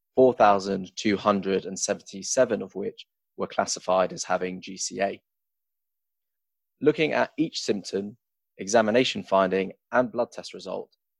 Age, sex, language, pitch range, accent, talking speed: 20-39, male, English, 95-125 Hz, British, 95 wpm